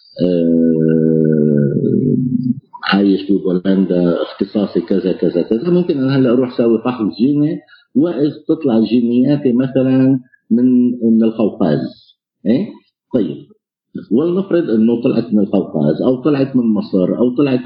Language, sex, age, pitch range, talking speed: Arabic, male, 50-69, 95-130 Hz, 115 wpm